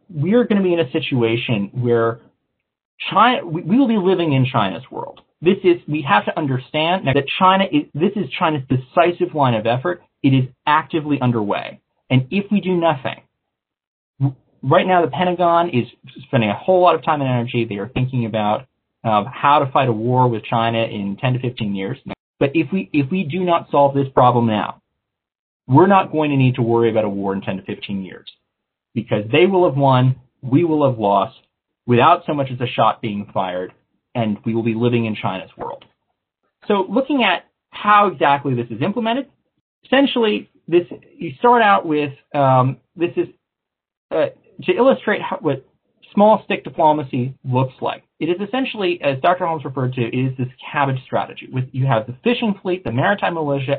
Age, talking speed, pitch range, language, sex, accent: 30-49, 190 wpm, 120-175 Hz, English, male, American